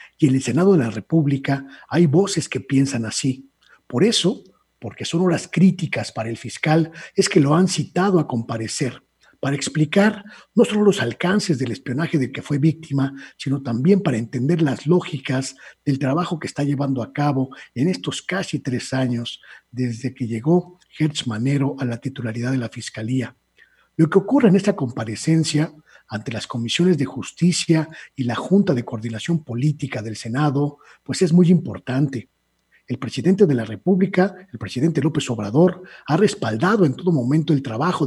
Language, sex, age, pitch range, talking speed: Spanish, male, 50-69, 125-175 Hz, 170 wpm